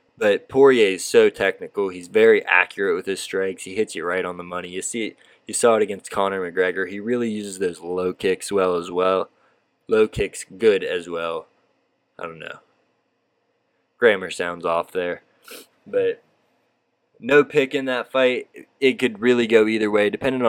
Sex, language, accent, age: male, English, American, 20-39